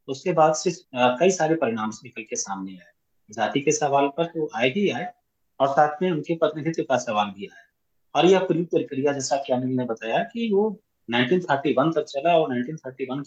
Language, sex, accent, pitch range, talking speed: English, male, Indian, 130-185 Hz, 130 wpm